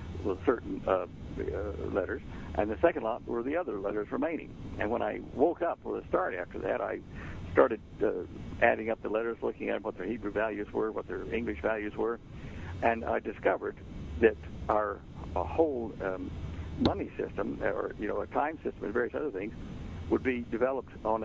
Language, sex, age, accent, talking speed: English, male, 60-79, American, 190 wpm